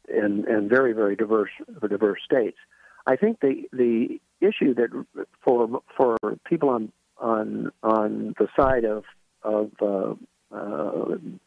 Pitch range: 110-135 Hz